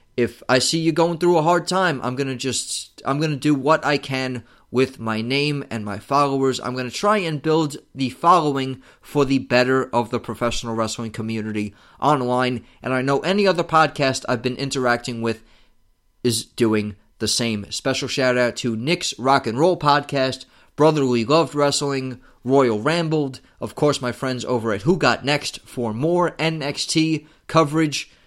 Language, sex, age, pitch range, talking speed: English, male, 30-49, 125-160 Hz, 170 wpm